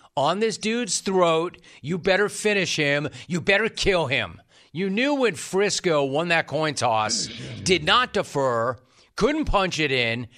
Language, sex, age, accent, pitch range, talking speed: English, male, 40-59, American, 135-180 Hz, 155 wpm